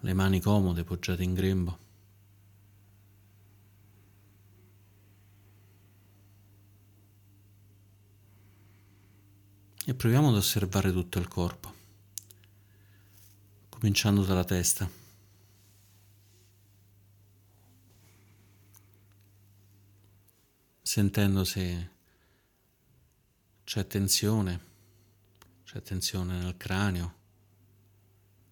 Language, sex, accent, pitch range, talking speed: Italian, male, native, 95-100 Hz, 50 wpm